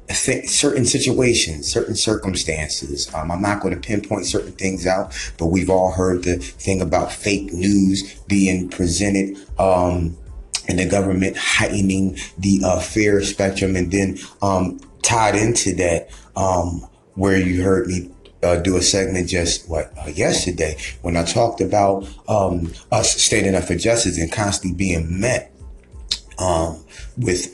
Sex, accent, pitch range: male, American, 80-95 Hz